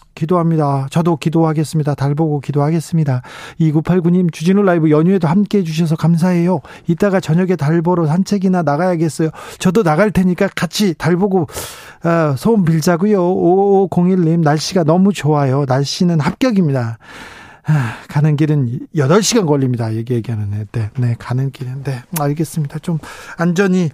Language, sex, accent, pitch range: Korean, male, native, 145-175 Hz